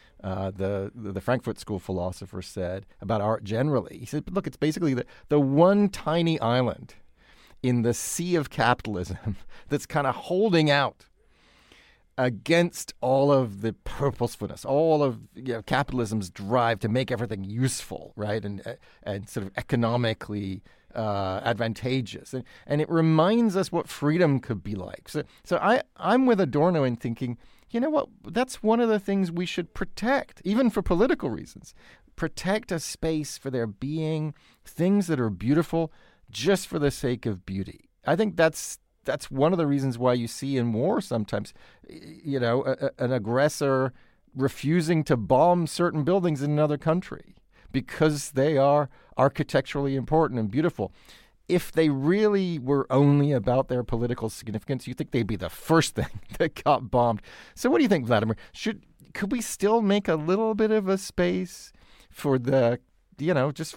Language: English